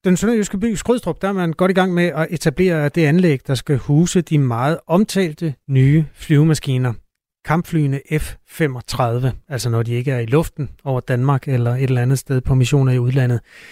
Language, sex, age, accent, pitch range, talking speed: Danish, male, 30-49, native, 135-170 Hz, 185 wpm